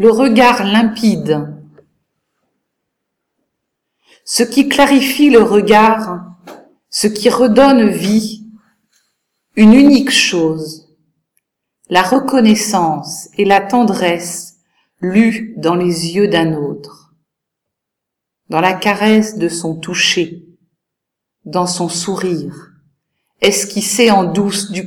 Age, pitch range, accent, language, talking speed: 50-69, 165-225 Hz, French, French, 95 wpm